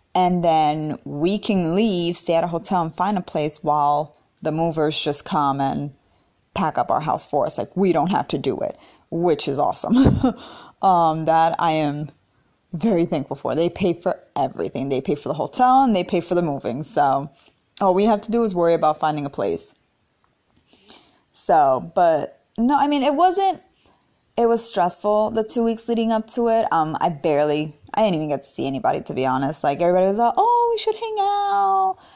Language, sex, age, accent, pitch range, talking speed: English, female, 20-39, American, 165-245 Hz, 200 wpm